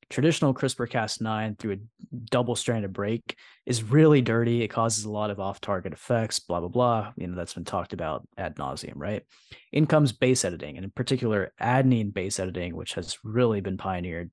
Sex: male